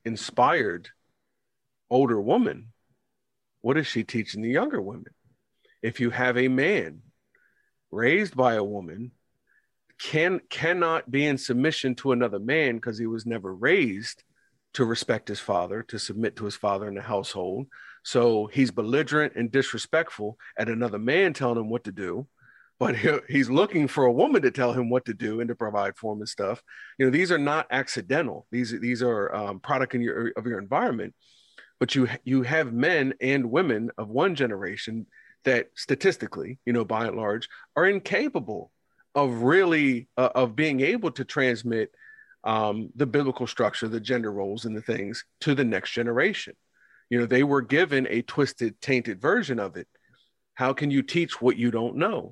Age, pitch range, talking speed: 40-59, 115-135 Hz, 170 wpm